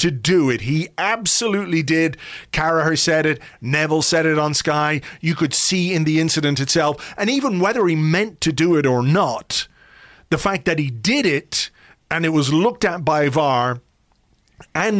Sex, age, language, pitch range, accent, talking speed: male, 40-59, English, 140-170 Hz, British, 180 wpm